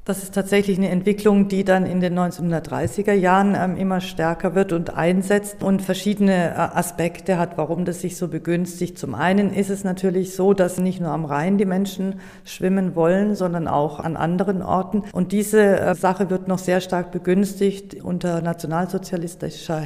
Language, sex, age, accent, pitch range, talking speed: German, female, 50-69, German, 160-190 Hz, 165 wpm